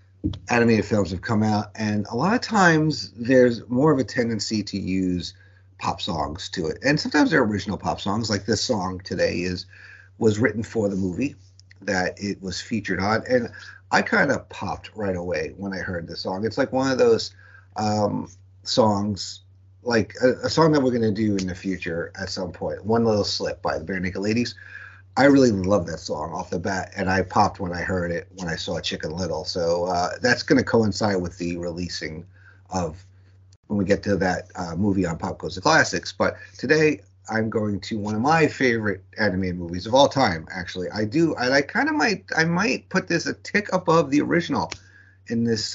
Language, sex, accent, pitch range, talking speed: English, male, American, 95-115 Hz, 210 wpm